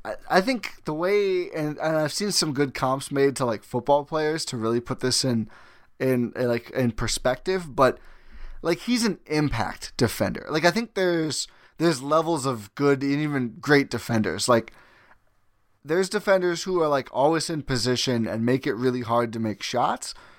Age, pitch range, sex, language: 20-39, 120-155 Hz, male, English